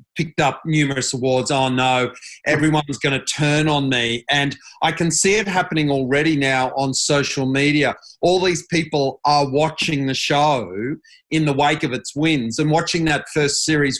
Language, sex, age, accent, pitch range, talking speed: English, male, 40-59, Australian, 135-155 Hz, 175 wpm